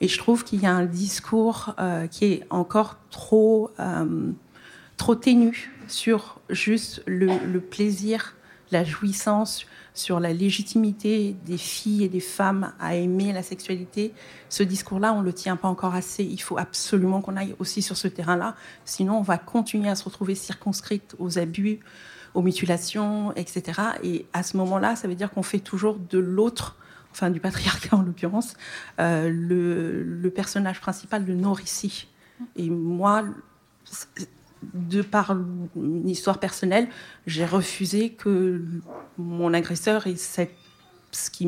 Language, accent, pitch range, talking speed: French, French, 180-210 Hz, 155 wpm